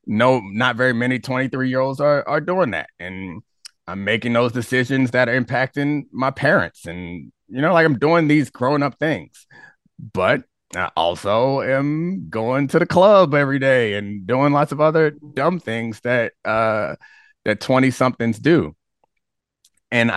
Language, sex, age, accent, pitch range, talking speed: English, male, 30-49, American, 105-135 Hz, 165 wpm